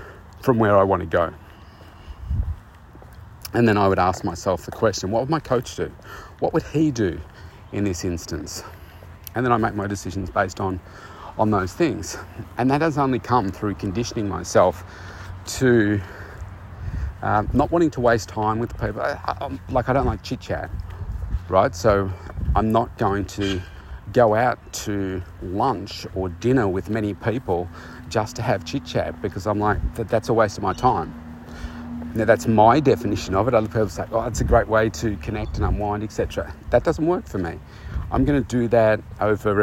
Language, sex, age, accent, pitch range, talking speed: English, male, 40-59, Australian, 90-115 Hz, 185 wpm